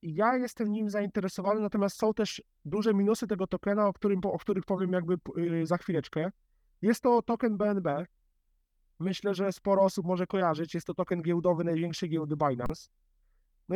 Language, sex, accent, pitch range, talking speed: Polish, male, native, 165-205 Hz, 160 wpm